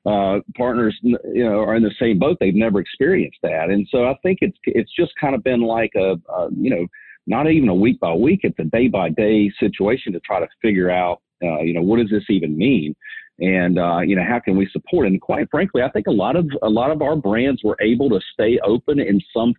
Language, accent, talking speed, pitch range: English, American, 250 wpm, 90-115 Hz